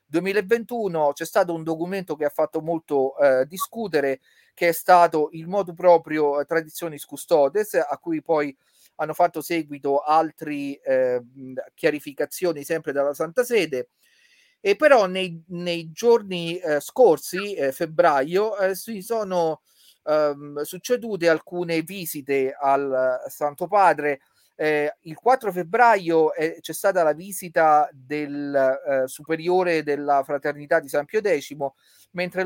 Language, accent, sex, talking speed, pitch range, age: Italian, native, male, 130 wpm, 145-180 Hz, 40-59